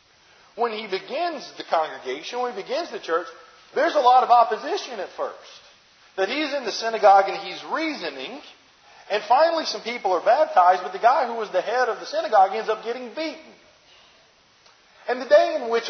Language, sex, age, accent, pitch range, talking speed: English, male, 40-59, American, 185-270 Hz, 190 wpm